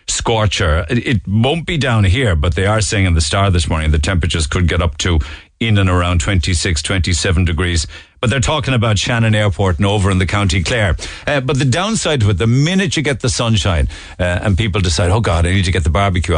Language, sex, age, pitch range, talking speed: English, male, 60-79, 85-110 Hz, 230 wpm